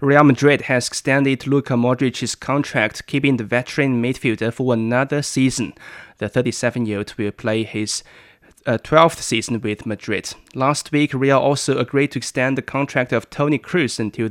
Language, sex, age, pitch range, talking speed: English, male, 20-39, 115-135 Hz, 150 wpm